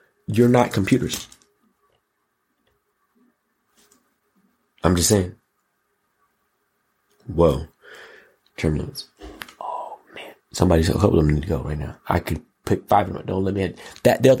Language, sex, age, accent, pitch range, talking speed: English, male, 30-49, American, 85-105 Hz, 130 wpm